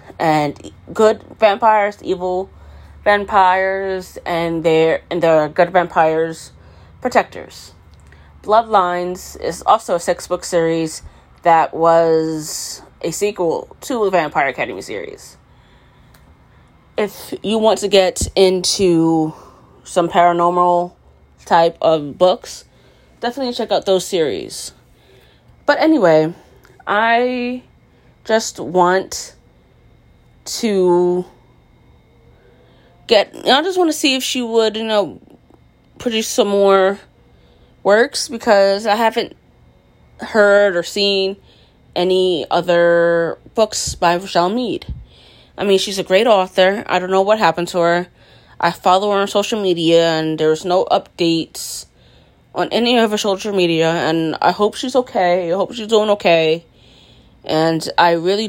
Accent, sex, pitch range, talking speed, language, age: American, female, 165-210 Hz, 120 wpm, English, 20-39